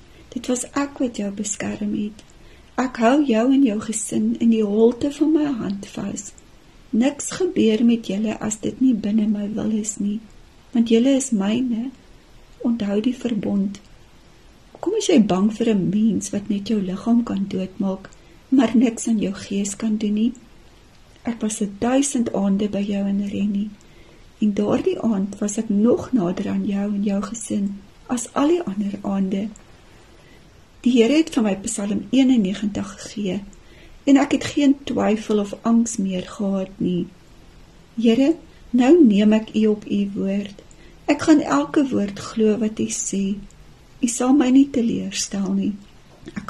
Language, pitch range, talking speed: Dutch, 200-255 Hz, 165 wpm